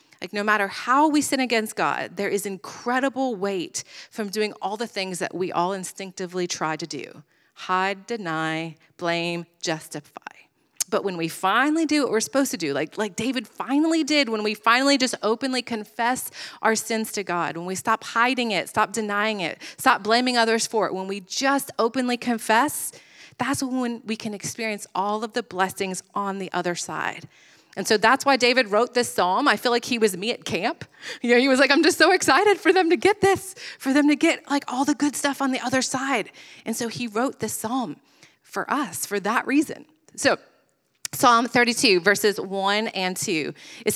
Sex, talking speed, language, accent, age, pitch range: female, 200 wpm, English, American, 30-49, 195-260 Hz